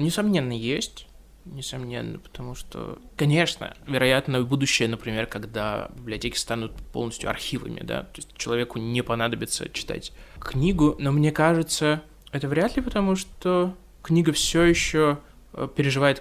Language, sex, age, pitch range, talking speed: Russian, male, 20-39, 120-150 Hz, 130 wpm